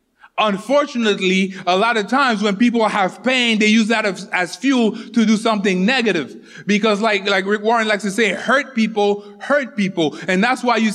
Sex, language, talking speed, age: male, English, 185 wpm, 20-39